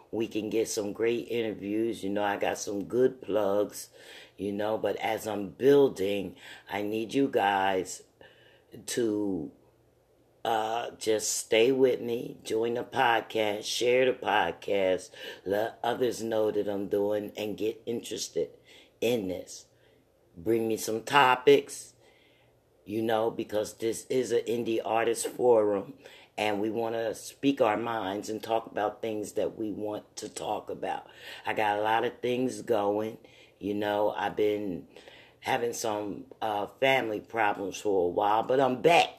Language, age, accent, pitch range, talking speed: English, 50-69, American, 105-120 Hz, 150 wpm